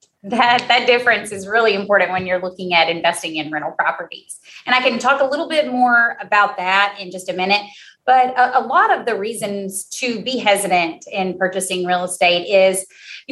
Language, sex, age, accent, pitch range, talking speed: English, female, 30-49, American, 185-235 Hz, 200 wpm